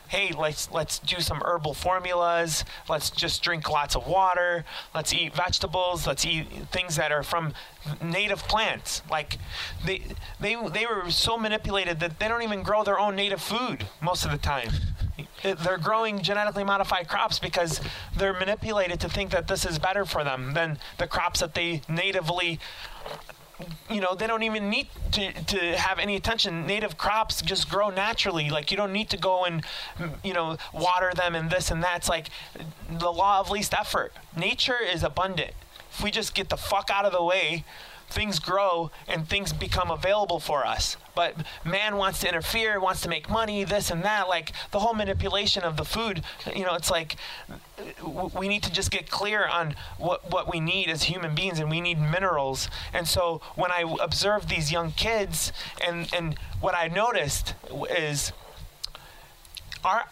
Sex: male